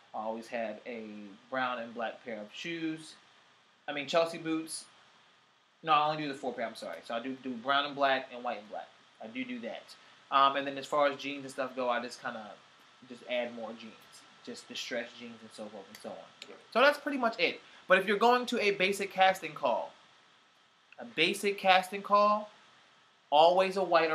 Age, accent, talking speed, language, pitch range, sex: 30-49, American, 215 wpm, English, 130-170 Hz, male